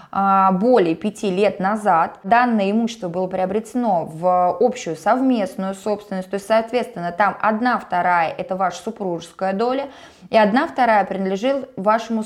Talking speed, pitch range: 130 wpm, 185-245 Hz